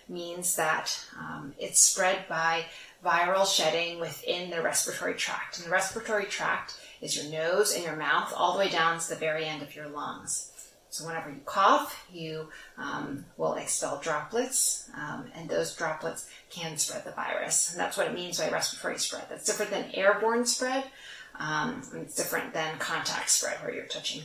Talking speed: 180 wpm